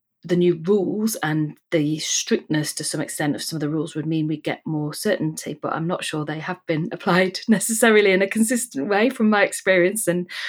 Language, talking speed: English, 210 wpm